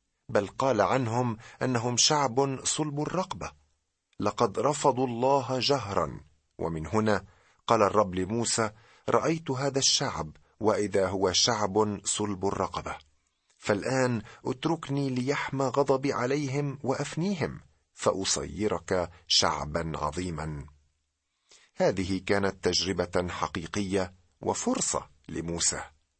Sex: male